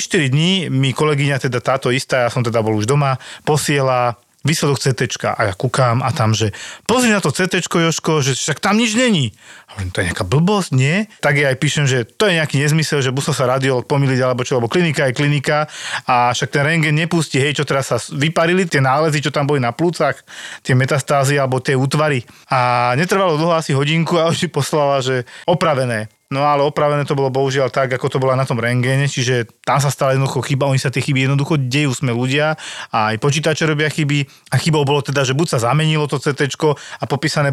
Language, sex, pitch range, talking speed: Slovak, male, 130-155 Hz, 215 wpm